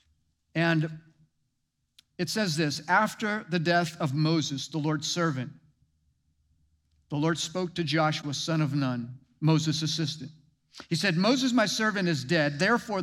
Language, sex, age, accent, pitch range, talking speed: English, male, 50-69, American, 145-175 Hz, 140 wpm